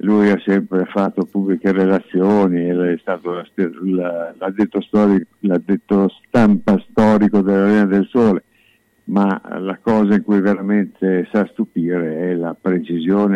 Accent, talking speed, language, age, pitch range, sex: native, 125 wpm, Italian, 60-79, 85-100 Hz, male